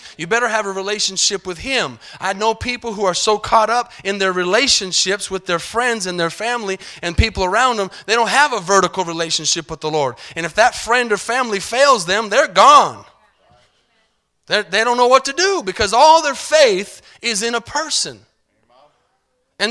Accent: American